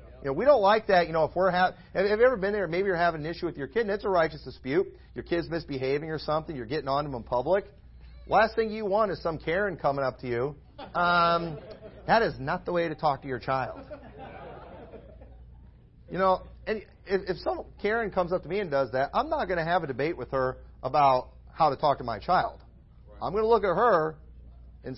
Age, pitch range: 40-59, 135-190 Hz